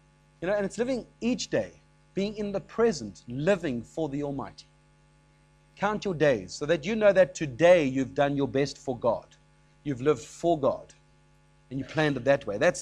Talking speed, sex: 190 wpm, male